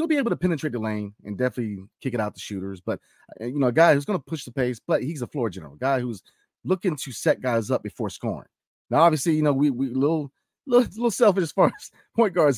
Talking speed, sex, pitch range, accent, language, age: 265 wpm, male, 110-155 Hz, American, English, 30-49